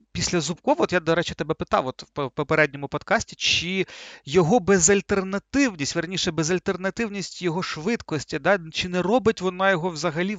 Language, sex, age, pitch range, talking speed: Ukrainian, male, 40-59, 155-190 Hz, 150 wpm